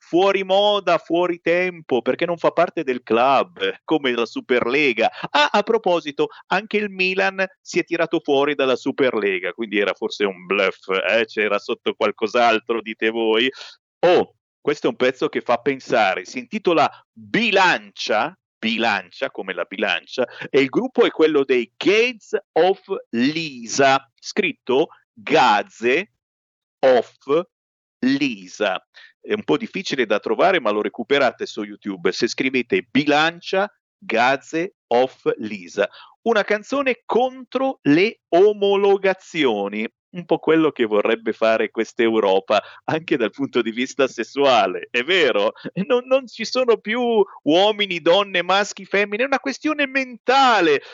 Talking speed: 135 wpm